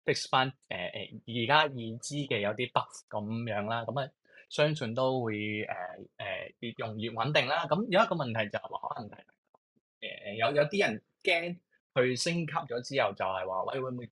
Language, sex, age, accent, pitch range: Chinese, male, 20-39, native, 110-140 Hz